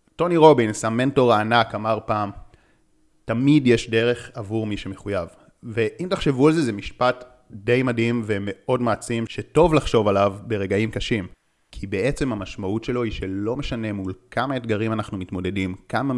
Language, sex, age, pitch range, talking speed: Hebrew, male, 30-49, 105-125 Hz, 150 wpm